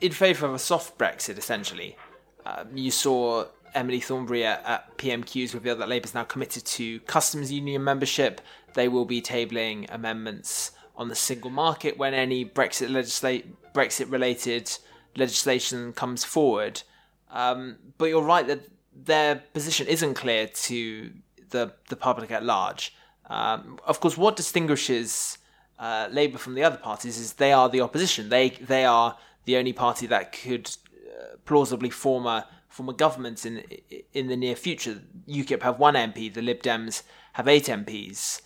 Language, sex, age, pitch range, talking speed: English, male, 20-39, 120-145 Hz, 160 wpm